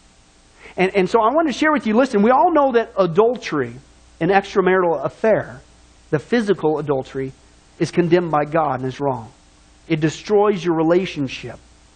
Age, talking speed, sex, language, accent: 40-59, 160 wpm, male, English, American